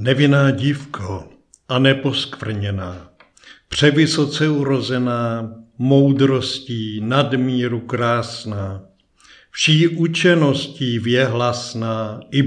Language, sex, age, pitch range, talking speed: Czech, male, 60-79, 115-150 Hz, 65 wpm